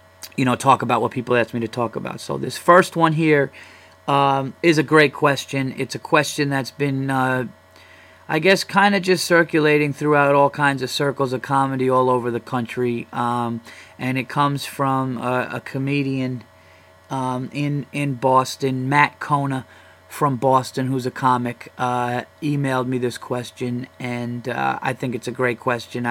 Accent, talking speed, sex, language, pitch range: American, 175 wpm, male, English, 125-145 Hz